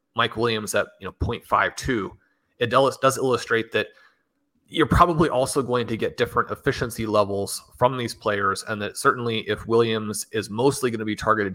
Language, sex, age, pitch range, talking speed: English, male, 30-49, 105-125 Hz, 175 wpm